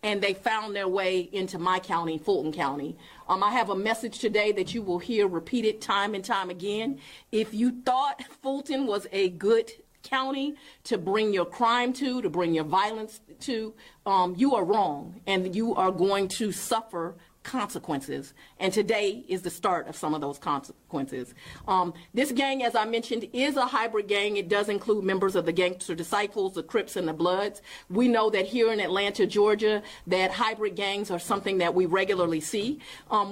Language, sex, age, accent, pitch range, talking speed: English, female, 40-59, American, 190-255 Hz, 185 wpm